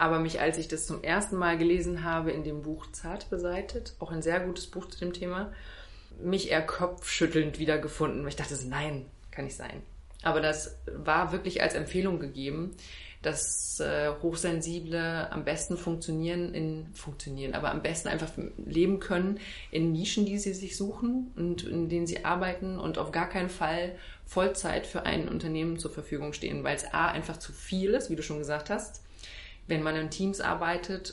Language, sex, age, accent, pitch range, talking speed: German, female, 20-39, German, 155-180 Hz, 185 wpm